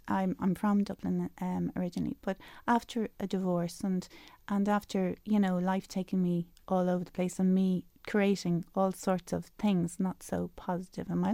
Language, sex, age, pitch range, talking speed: English, female, 30-49, 180-215 Hz, 180 wpm